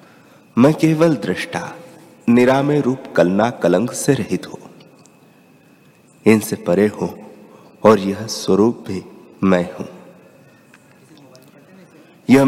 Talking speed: 95 wpm